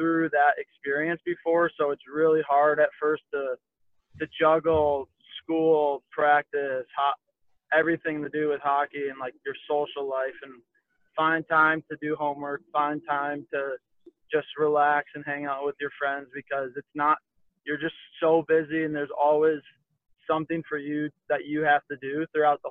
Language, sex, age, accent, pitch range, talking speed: English, male, 20-39, American, 140-160 Hz, 165 wpm